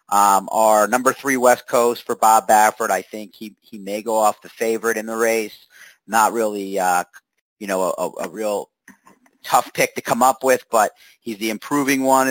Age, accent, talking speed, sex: 40-59, American, 195 wpm, male